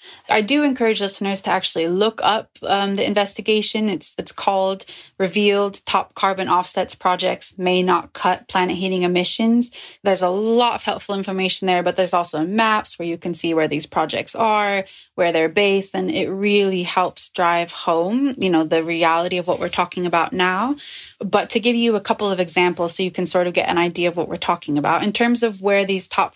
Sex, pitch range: female, 180-215 Hz